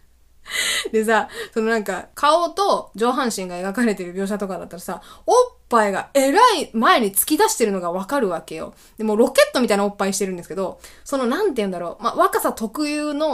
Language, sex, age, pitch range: Japanese, female, 20-39, 200-310 Hz